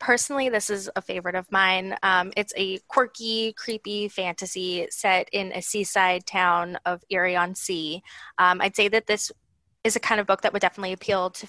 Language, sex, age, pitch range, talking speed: English, female, 20-39, 180-210 Hz, 195 wpm